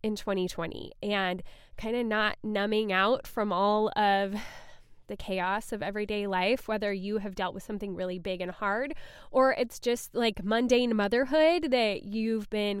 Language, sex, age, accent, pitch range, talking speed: English, female, 10-29, American, 205-275 Hz, 165 wpm